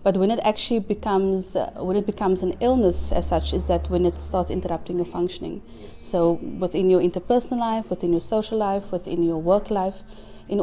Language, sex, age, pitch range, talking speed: English, female, 30-49, 175-215 Hz, 200 wpm